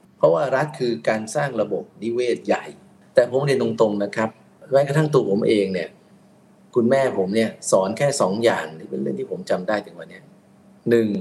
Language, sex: Thai, male